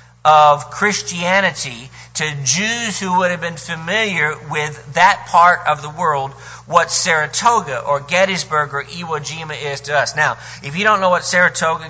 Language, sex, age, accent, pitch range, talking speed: English, male, 50-69, American, 140-180 Hz, 160 wpm